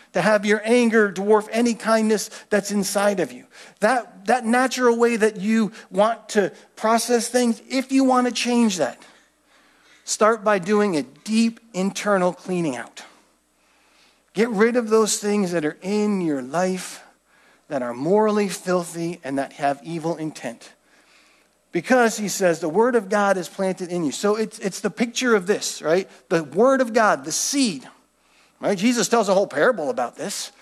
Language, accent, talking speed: English, American, 170 wpm